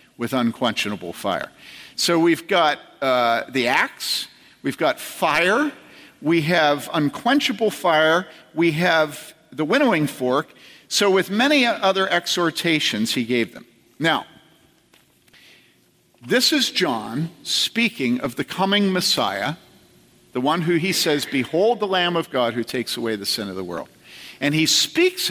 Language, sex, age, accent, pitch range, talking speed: English, male, 50-69, American, 145-235 Hz, 140 wpm